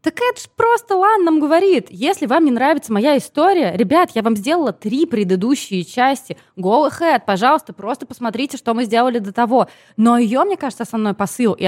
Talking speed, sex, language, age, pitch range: 195 wpm, female, Russian, 20-39, 200-275 Hz